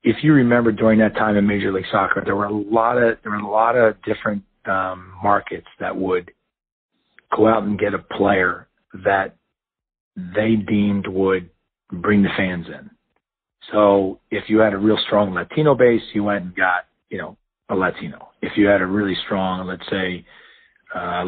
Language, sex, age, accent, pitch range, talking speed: English, male, 40-59, American, 100-115 Hz, 185 wpm